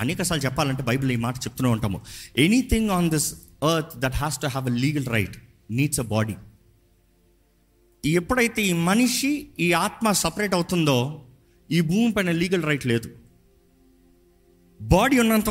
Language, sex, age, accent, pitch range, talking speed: Telugu, male, 50-69, native, 125-205 Hz, 135 wpm